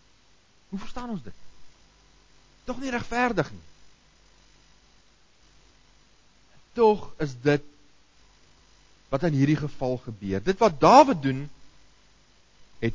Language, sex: English, male